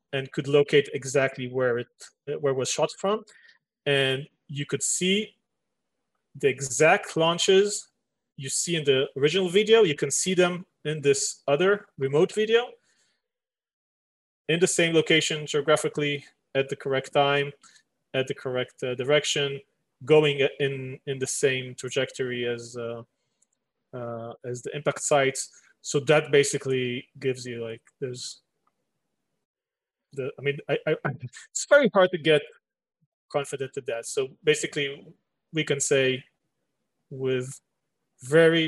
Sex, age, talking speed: male, 30-49, 135 wpm